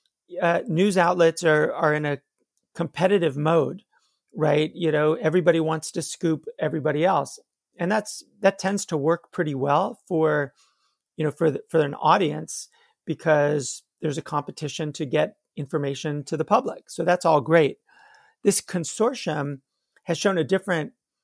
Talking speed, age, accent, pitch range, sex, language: 155 wpm, 40-59, American, 150-180 Hz, male, English